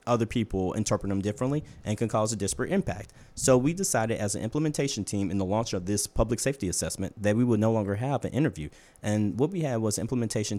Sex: male